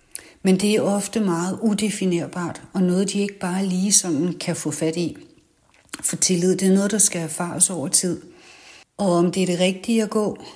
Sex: female